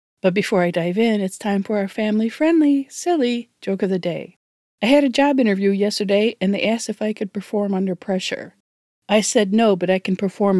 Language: English